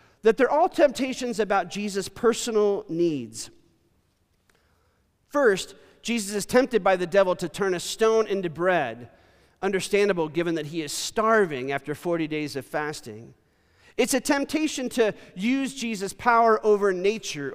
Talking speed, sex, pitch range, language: 140 wpm, male, 165-225 Hz, English